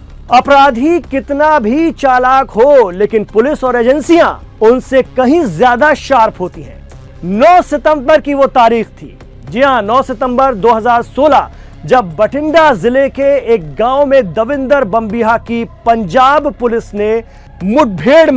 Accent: native